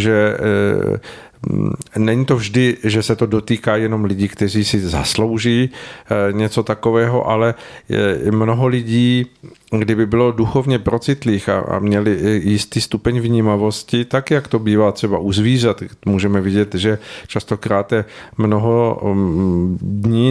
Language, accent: Czech, native